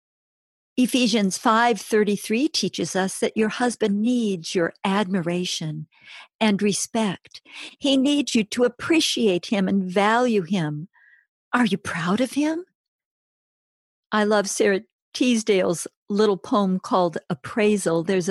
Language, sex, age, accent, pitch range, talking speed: English, female, 50-69, American, 185-245 Hz, 115 wpm